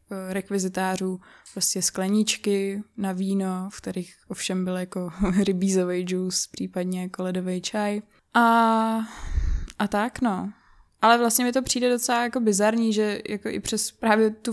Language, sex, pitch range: Czech, female, 190-215 Hz